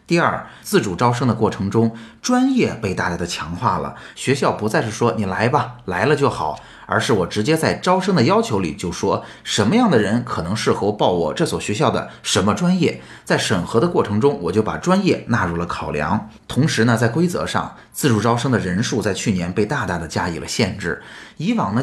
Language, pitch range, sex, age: Chinese, 100-130 Hz, male, 20-39